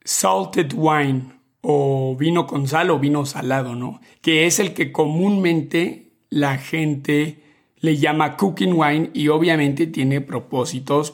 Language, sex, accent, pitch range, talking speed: Spanish, male, Mexican, 140-165 Hz, 135 wpm